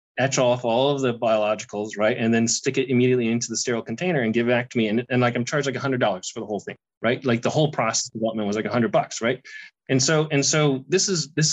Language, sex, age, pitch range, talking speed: English, male, 20-39, 110-135 Hz, 280 wpm